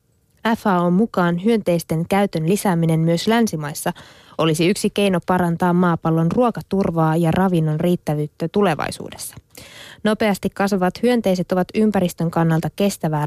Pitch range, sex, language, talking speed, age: 165-205 Hz, female, Finnish, 110 wpm, 20-39